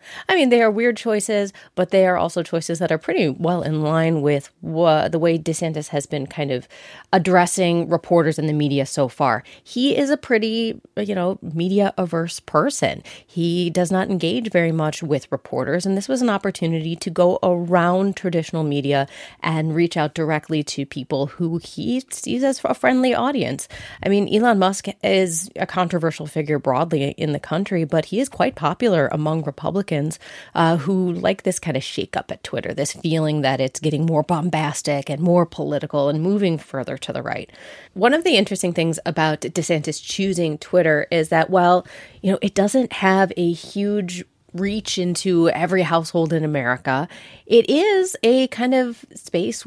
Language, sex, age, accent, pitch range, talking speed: English, female, 30-49, American, 155-195 Hz, 180 wpm